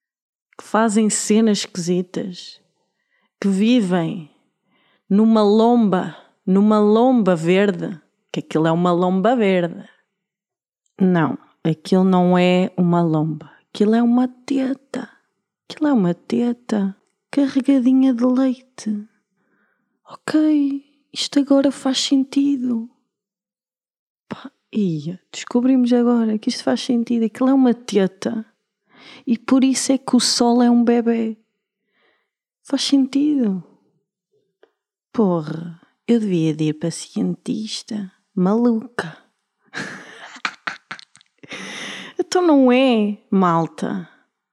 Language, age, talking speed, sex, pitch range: Portuguese, 20-39, 100 wpm, female, 185-255 Hz